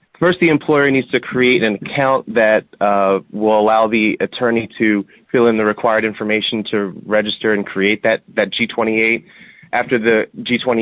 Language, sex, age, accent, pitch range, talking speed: English, male, 30-49, American, 105-115 Hz, 165 wpm